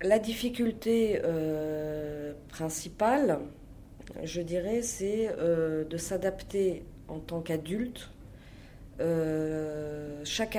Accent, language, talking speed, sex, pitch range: French, French, 75 wpm, female, 150-175 Hz